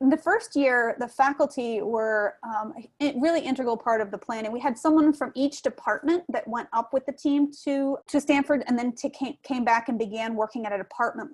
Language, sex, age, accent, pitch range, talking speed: English, female, 30-49, American, 215-260 Hz, 215 wpm